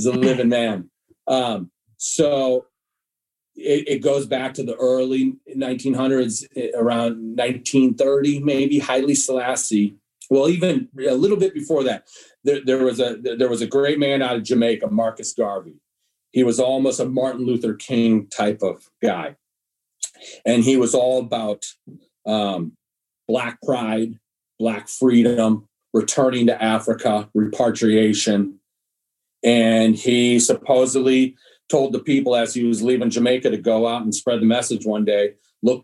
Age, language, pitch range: 40-59, English, 115-130 Hz